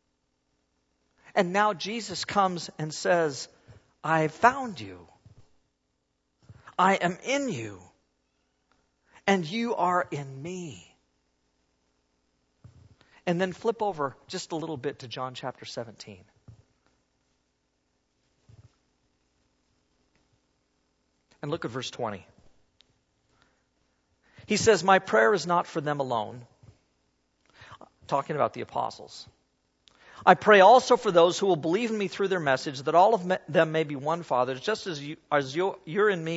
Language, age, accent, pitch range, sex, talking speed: English, 50-69, American, 120-195 Hz, male, 125 wpm